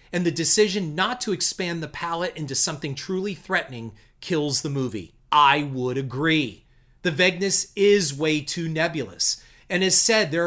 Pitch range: 145-190 Hz